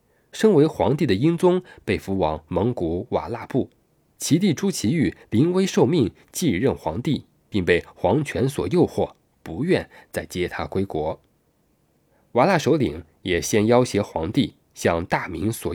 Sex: male